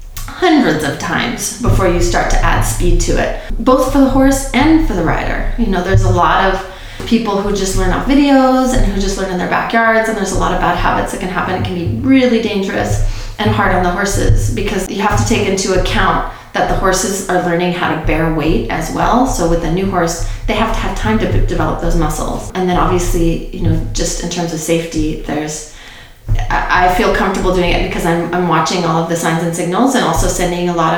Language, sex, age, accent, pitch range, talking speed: English, female, 30-49, American, 160-190 Hz, 235 wpm